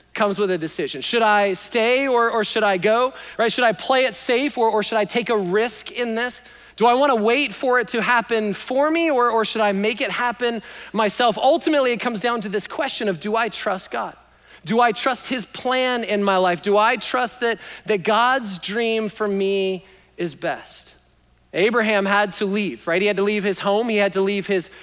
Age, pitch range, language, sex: 30-49, 200-240 Hz, English, male